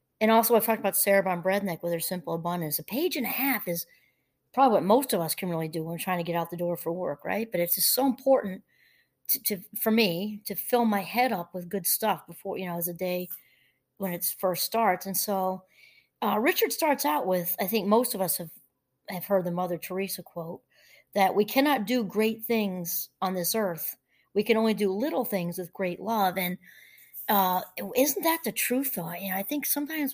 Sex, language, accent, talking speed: female, English, American, 225 wpm